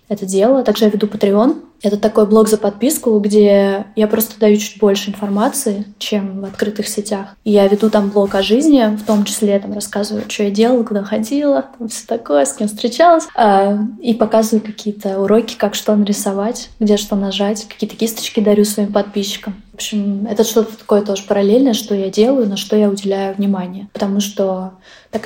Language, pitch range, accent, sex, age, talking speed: Russian, 200-220 Hz, native, female, 20-39, 190 wpm